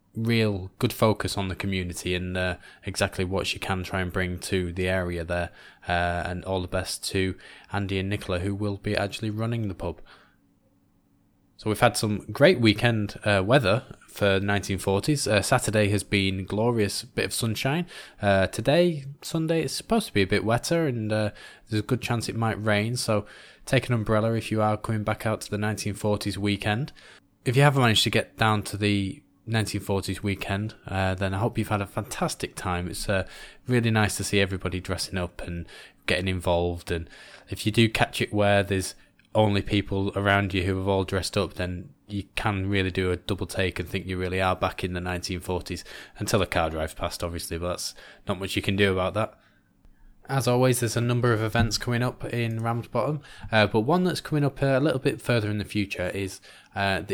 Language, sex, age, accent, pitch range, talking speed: English, male, 20-39, British, 95-115 Hz, 205 wpm